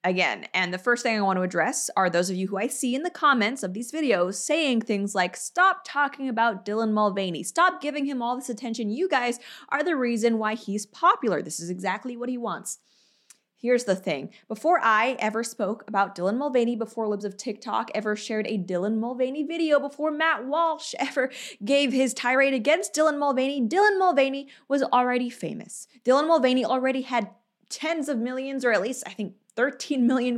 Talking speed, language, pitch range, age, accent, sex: 195 wpm, English, 210-270 Hz, 20-39, American, female